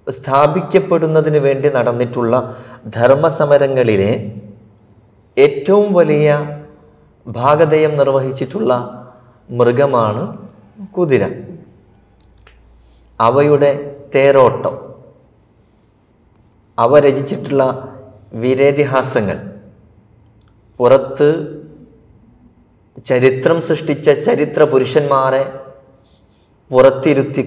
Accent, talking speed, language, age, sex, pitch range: native, 45 wpm, Malayalam, 30-49, male, 110-140 Hz